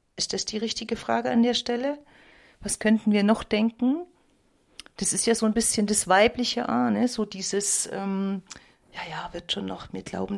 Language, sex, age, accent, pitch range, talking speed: German, female, 40-59, German, 190-215 Hz, 185 wpm